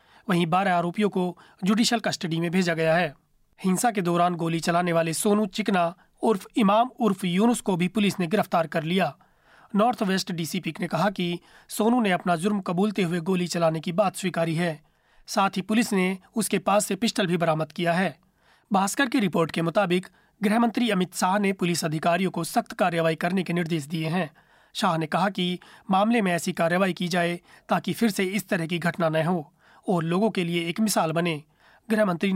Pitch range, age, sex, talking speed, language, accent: 175-210 Hz, 30-49, male, 195 wpm, Hindi, native